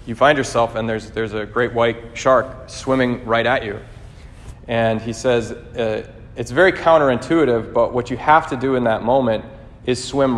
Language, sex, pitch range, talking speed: English, male, 115-135 Hz, 185 wpm